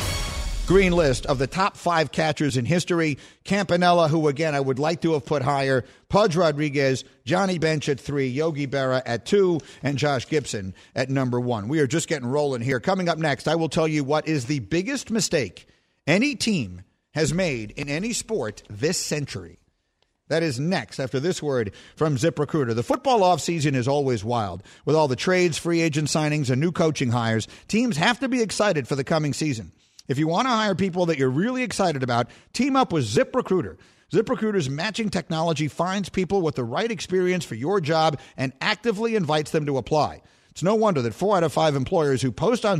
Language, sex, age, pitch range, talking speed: English, male, 50-69, 130-185 Hz, 200 wpm